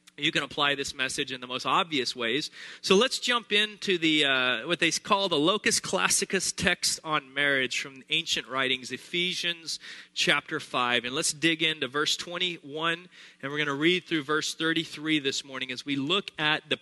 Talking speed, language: 185 wpm, English